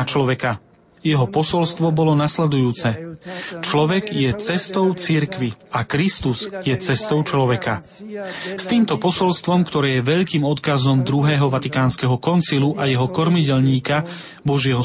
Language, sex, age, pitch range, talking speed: Slovak, male, 30-49, 135-170 Hz, 115 wpm